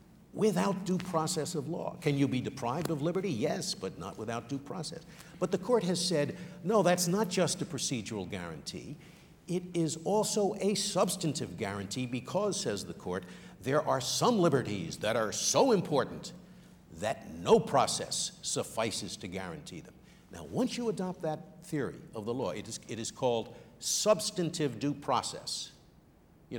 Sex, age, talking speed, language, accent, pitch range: male, 60-79, 165 wpm, English, American, 135-190 Hz